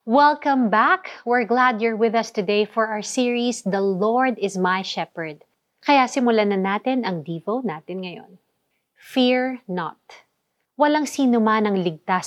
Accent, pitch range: native, 195-245 Hz